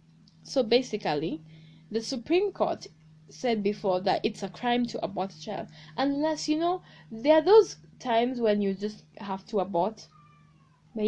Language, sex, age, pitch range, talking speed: English, female, 10-29, 195-245 Hz, 155 wpm